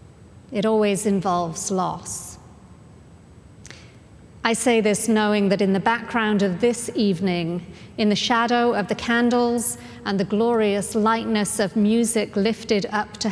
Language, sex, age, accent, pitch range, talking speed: English, female, 40-59, British, 200-245 Hz, 135 wpm